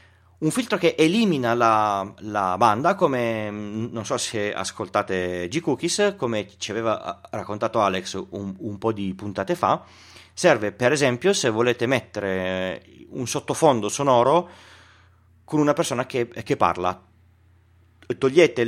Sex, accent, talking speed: male, native, 130 wpm